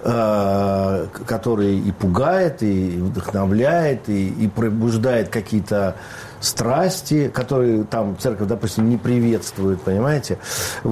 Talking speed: 95 wpm